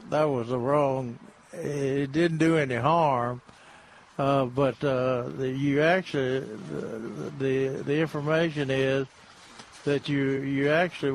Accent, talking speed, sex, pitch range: American, 130 wpm, male, 130-155 Hz